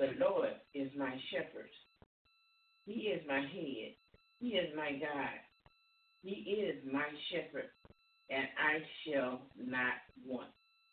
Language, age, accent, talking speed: English, 50-69, American, 120 wpm